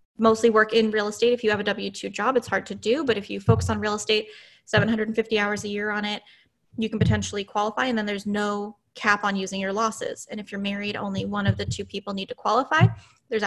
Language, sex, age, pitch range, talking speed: English, female, 10-29, 205-245 Hz, 245 wpm